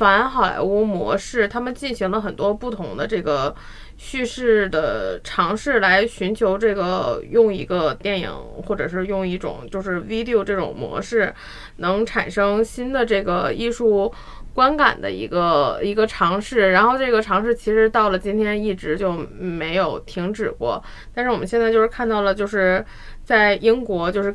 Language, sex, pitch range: Chinese, female, 190-235 Hz